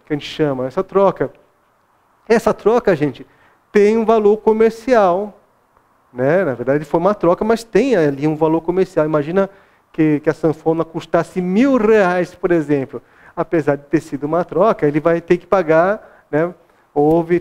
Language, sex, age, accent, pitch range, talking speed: Portuguese, male, 40-59, Brazilian, 160-200 Hz, 165 wpm